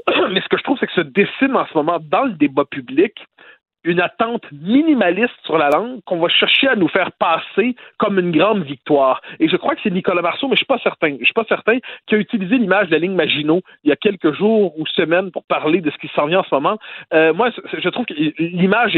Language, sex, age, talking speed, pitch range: French, male, 40-59, 245 wpm, 160-230 Hz